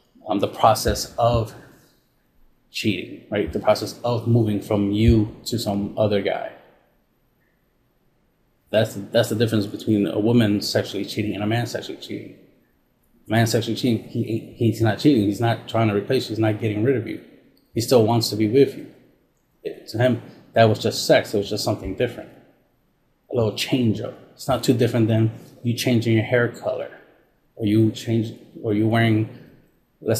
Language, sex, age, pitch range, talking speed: English, male, 30-49, 105-120 Hz, 180 wpm